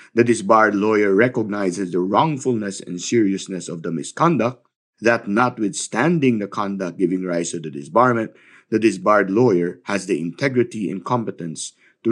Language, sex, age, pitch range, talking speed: Filipino, male, 50-69, 95-140 Hz, 145 wpm